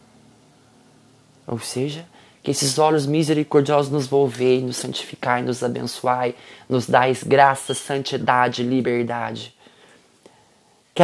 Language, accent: Portuguese, Brazilian